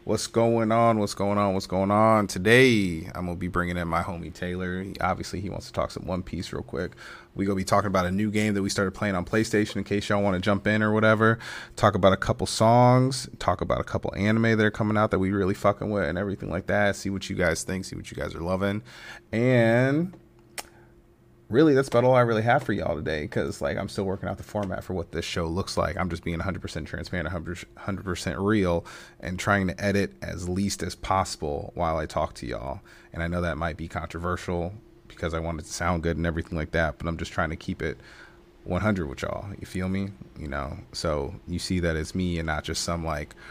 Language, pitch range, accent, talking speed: English, 85-105 Hz, American, 240 wpm